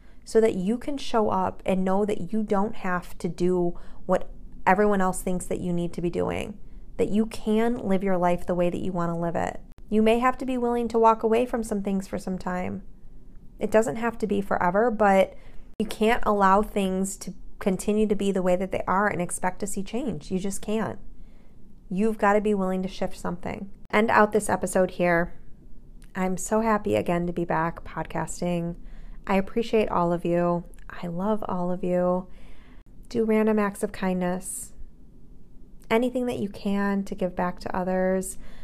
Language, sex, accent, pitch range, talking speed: English, female, American, 185-225 Hz, 195 wpm